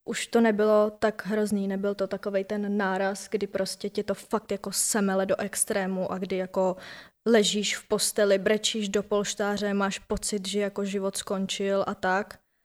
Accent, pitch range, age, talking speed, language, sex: native, 195-220 Hz, 20-39, 170 wpm, Czech, female